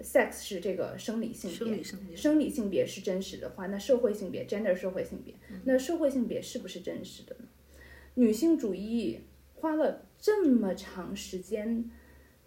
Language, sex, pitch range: Chinese, female, 195-260 Hz